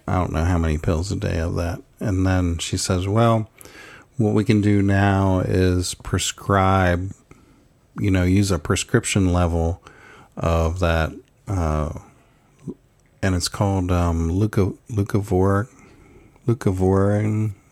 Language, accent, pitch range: English, American, 90-115 Hz